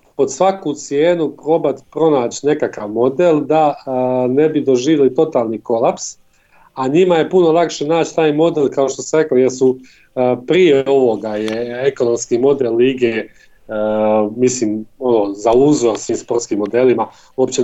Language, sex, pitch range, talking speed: Croatian, male, 130-165 Hz, 145 wpm